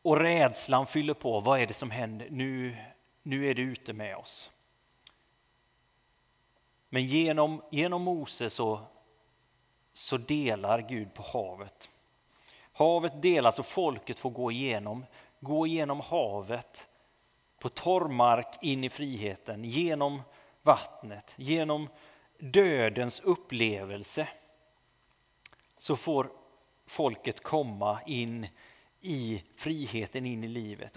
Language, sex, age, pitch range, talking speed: Swedish, male, 30-49, 120-155 Hz, 110 wpm